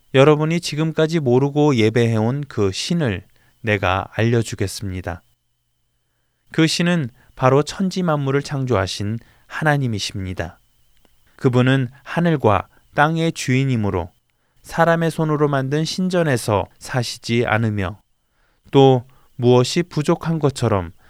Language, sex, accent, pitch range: Korean, male, native, 100-145 Hz